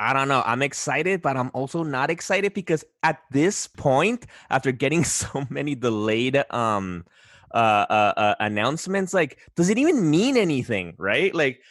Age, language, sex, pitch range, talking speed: 20-39, English, male, 125-200 Hz, 165 wpm